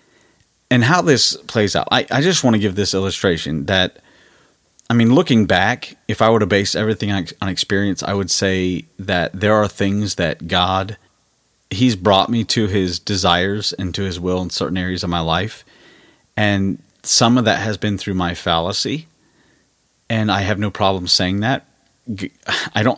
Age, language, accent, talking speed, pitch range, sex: 30-49, English, American, 180 wpm, 90-110 Hz, male